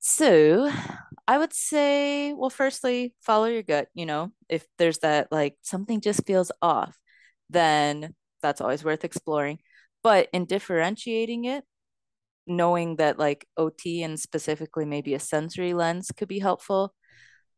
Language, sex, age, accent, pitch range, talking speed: English, female, 20-39, American, 160-215 Hz, 140 wpm